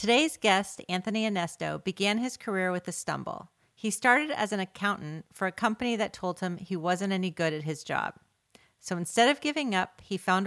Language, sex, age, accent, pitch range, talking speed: English, female, 40-59, American, 170-215 Hz, 200 wpm